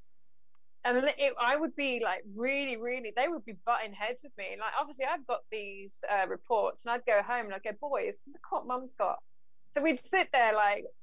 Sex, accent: female, British